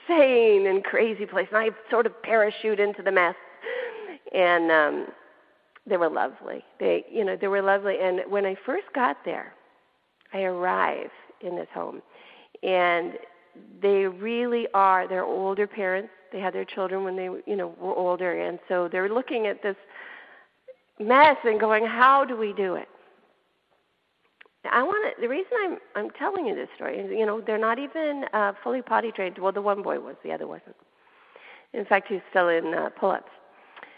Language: English